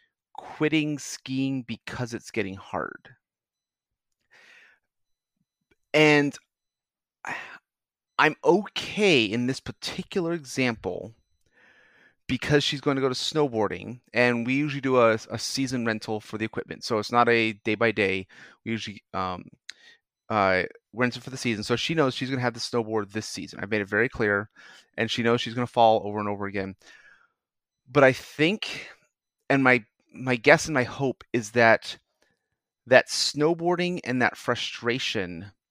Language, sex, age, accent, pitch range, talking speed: English, male, 30-49, American, 110-135 Hz, 155 wpm